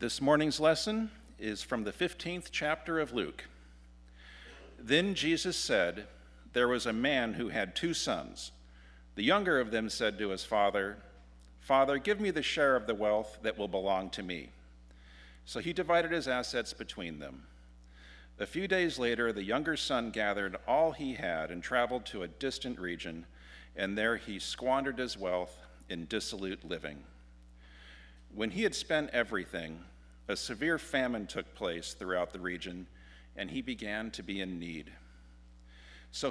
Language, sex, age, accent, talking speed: English, male, 50-69, American, 160 wpm